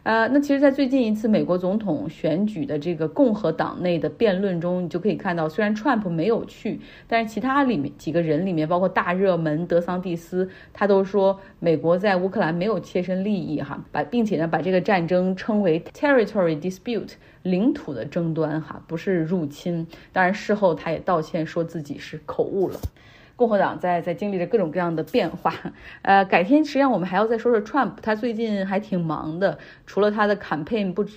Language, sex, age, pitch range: Chinese, female, 30-49, 165-215 Hz